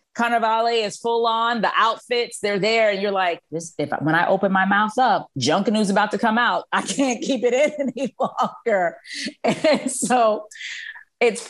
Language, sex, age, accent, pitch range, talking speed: English, female, 40-59, American, 185-255 Hz, 190 wpm